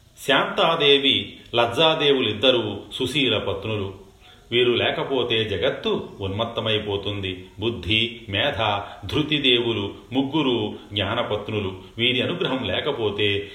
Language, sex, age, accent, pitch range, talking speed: Telugu, male, 40-59, native, 95-120 Hz, 70 wpm